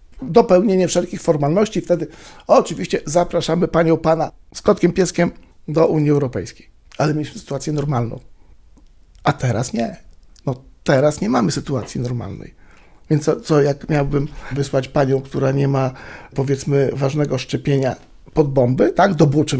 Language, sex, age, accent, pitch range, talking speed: Polish, male, 50-69, native, 135-160 Hz, 140 wpm